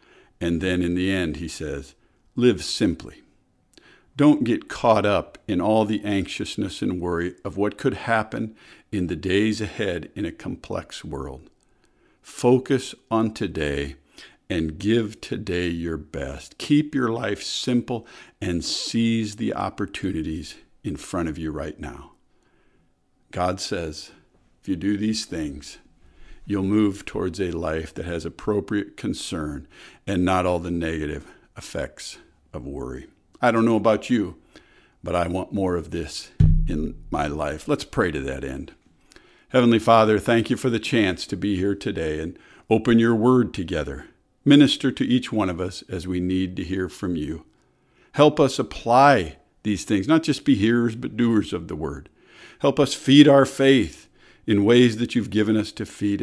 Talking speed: 160 wpm